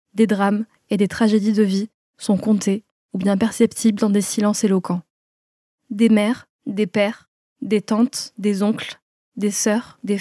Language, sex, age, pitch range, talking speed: French, female, 20-39, 205-230 Hz, 160 wpm